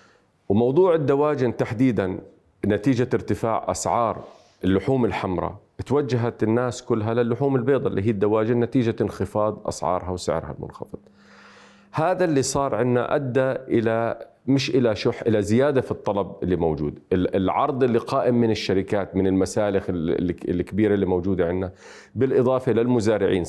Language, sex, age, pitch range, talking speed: Arabic, male, 40-59, 95-125 Hz, 125 wpm